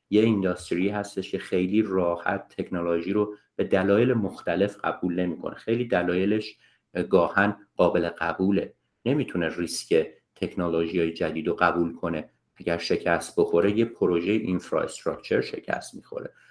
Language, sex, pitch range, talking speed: Persian, male, 90-110 Hz, 125 wpm